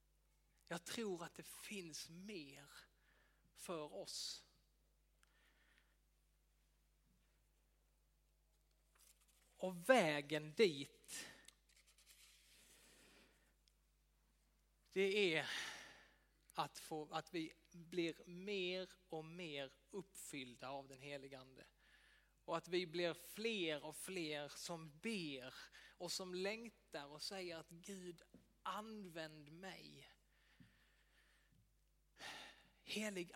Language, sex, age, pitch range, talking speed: Swedish, male, 30-49, 155-190 Hz, 80 wpm